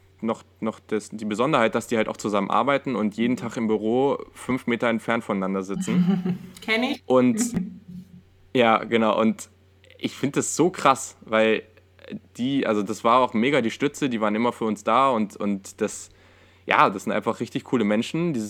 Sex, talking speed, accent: male, 180 wpm, German